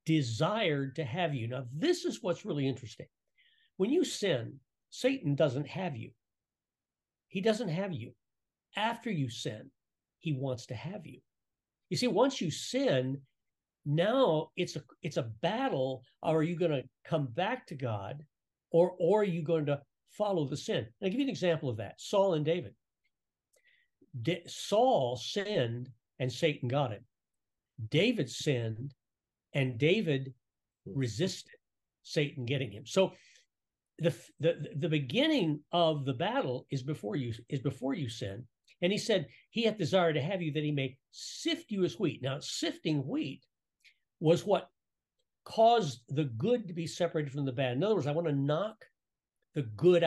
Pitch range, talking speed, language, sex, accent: 130-180 Hz, 165 wpm, English, male, American